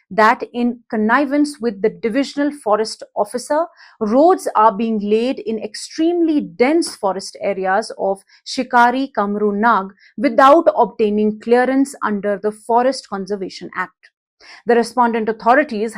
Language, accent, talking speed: English, Indian, 120 wpm